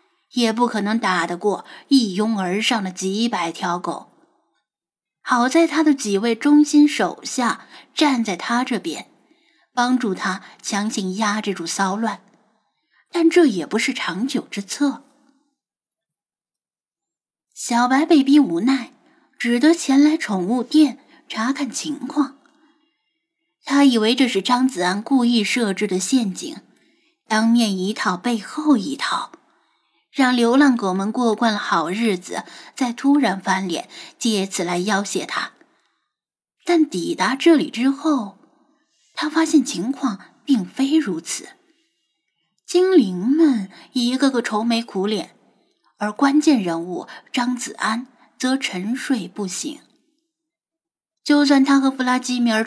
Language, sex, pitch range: Chinese, female, 210-295 Hz